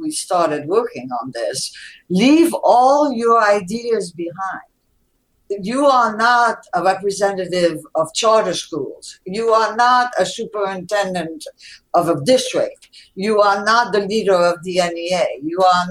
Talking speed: 135 wpm